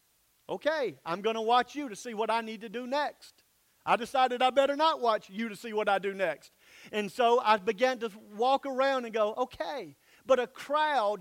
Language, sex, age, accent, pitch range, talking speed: English, male, 50-69, American, 220-255 Hz, 215 wpm